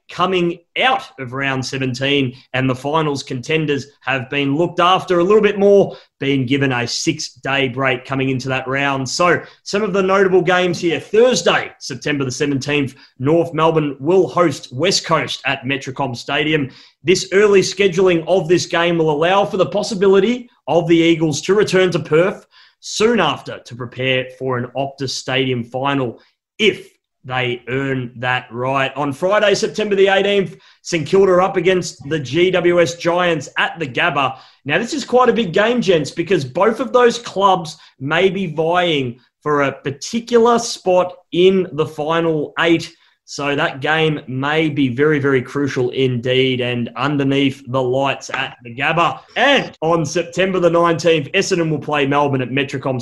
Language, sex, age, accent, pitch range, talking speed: English, male, 30-49, Australian, 135-185 Hz, 165 wpm